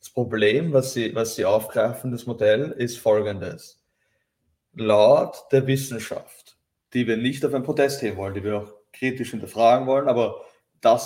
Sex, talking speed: male, 165 wpm